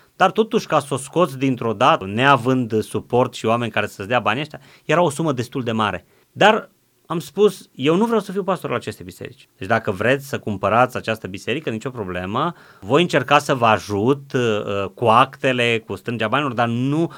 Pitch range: 115-155 Hz